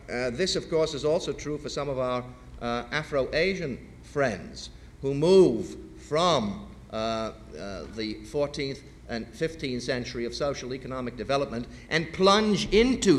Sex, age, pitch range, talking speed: male, 50-69, 110-150 Hz, 135 wpm